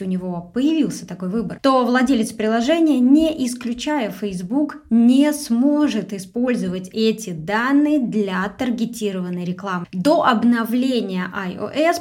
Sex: female